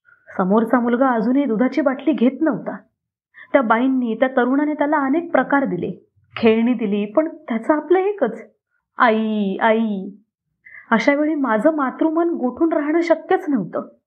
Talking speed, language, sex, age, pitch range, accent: 130 wpm, Marathi, female, 20-39, 220-280 Hz, native